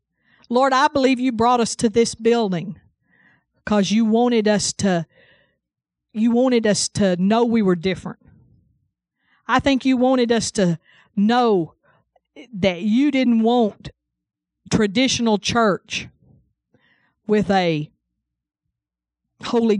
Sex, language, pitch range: female, English, 190-240 Hz